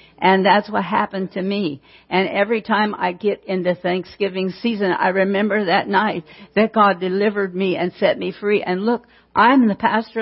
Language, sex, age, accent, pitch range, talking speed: English, female, 60-79, American, 190-220 Hz, 180 wpm